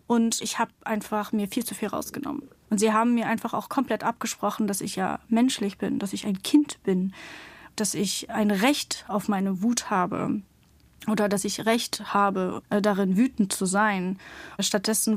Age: 30-49